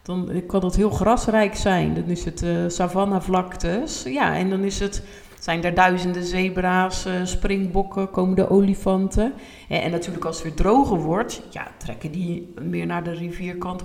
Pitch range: 165-190 Hz